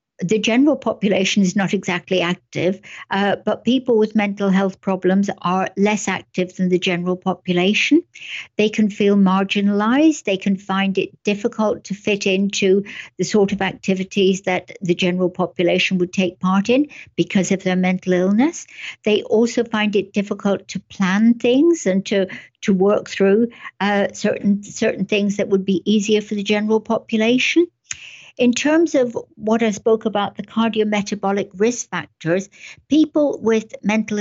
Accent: British